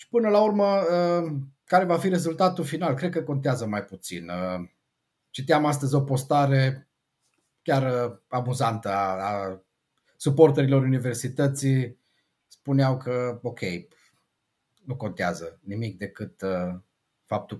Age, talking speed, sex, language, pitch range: 30-49, 105 wpm, male, Romanian, 125-155 Hz